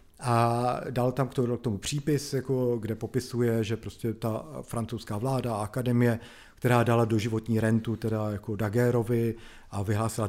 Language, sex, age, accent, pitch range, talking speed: Czech, male, 40-59, native, 110-125 Hz, 135 wpm